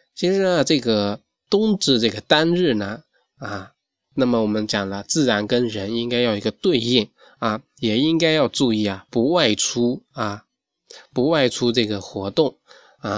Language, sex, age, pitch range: Chinese, male, 20-39, 105-130 Hz